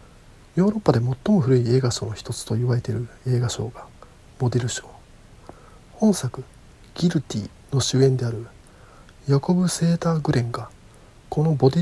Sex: male